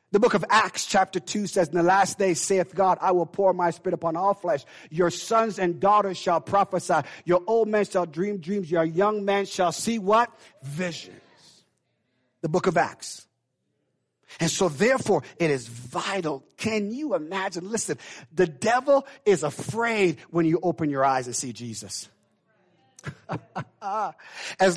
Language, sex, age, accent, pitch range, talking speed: English, male, 50-69, American, 150-220 Hz, 160 wpm